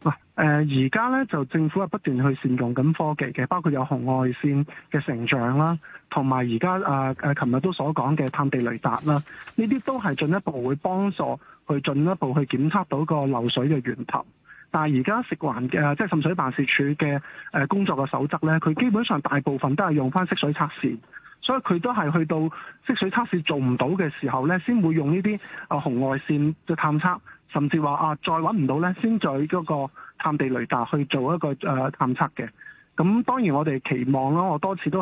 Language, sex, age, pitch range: Chinese, male, 20-39, 140-180 Hz